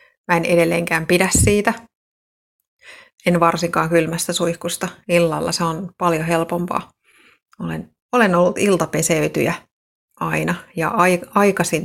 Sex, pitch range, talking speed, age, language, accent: female, 160-175 Hz, 110 wpm, 30-49, Finnish, native